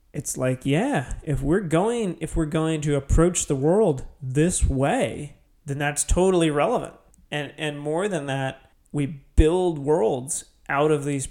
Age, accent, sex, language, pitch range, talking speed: 30-49, American, male, English, 140-170 Hz, 160 wpm